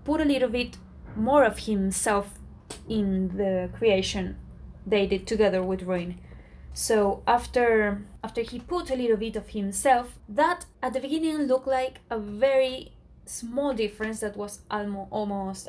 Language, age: English, 20-39